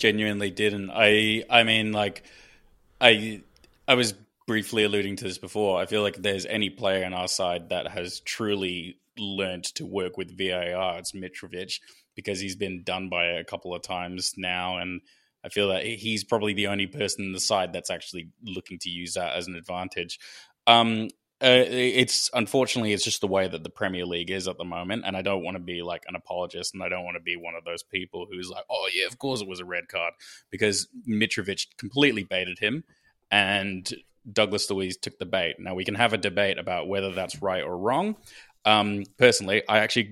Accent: Australian